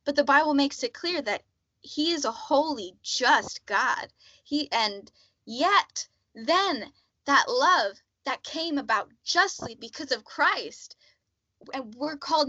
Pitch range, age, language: 190-275 Hz, 10-29, English